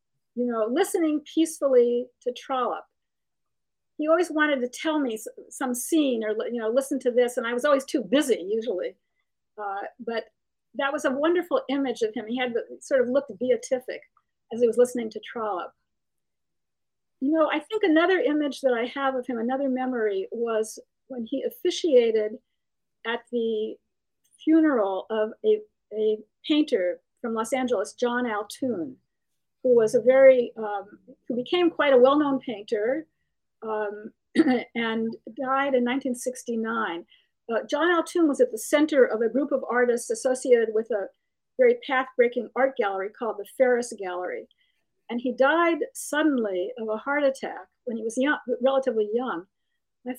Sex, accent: female, American